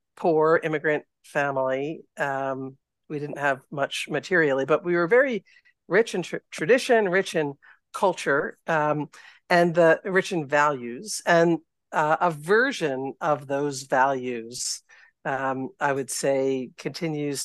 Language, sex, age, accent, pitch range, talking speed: English, female, 50-69, American, 140-170 Hz, 130 wpm